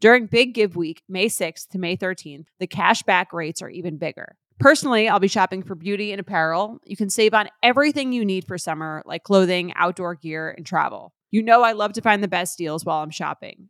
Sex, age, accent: female, 20-39, American